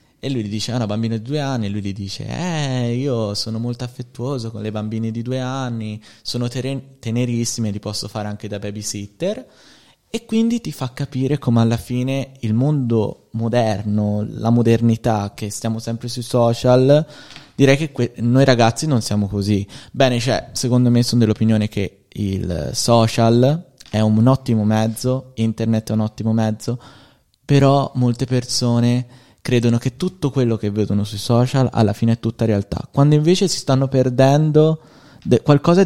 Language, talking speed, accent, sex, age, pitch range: Italian, 170 wpm, native, male, 20-39, 110-135 Hz